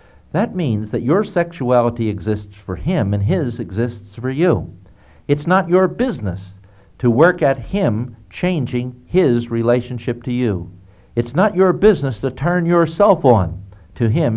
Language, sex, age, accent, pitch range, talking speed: English, male, 60-79, American, 100-150 Hz, 150 wpm